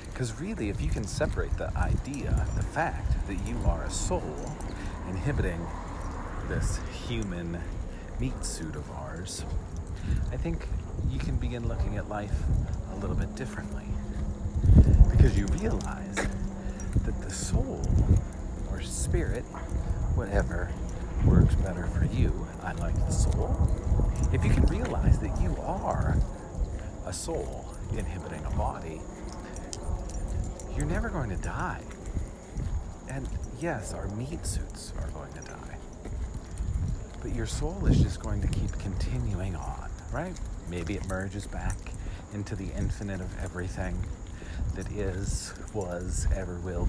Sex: male